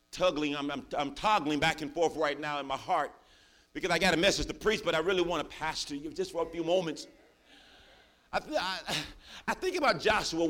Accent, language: American, English